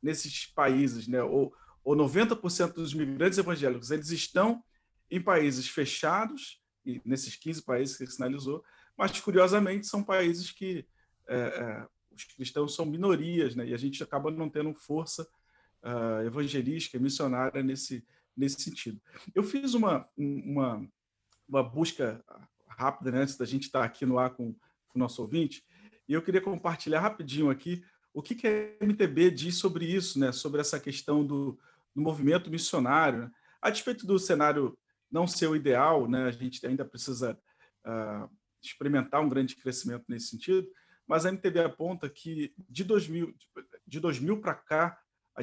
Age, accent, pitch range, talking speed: 40-59, Brazilian, 130-170 Hz, 155 wpm